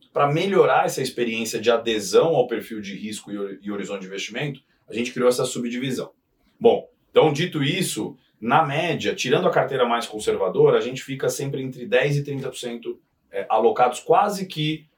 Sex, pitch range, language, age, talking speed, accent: male, 120-175 Hz, Portuguese, 30-49, 170 wpm, Brazilian